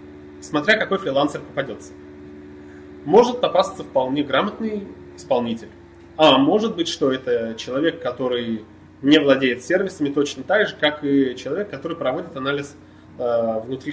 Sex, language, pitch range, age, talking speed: male, Russian, 115-170 Hz, 30-49, 130 wpm